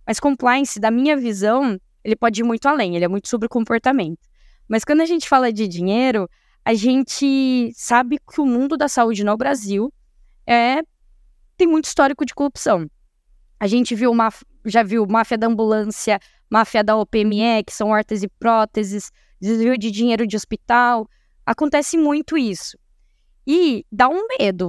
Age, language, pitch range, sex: 10-29, Portuguese, 215-275 Hz, female